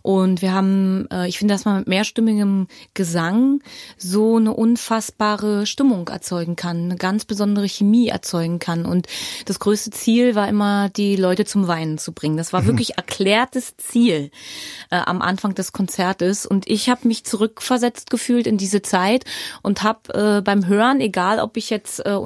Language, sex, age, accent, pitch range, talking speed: German, female, 20-39, German, 195-235 Hz, 170 wpm